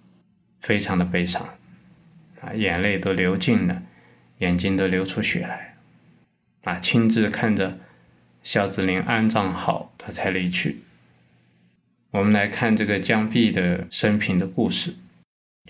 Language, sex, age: Chinese, male, 20-39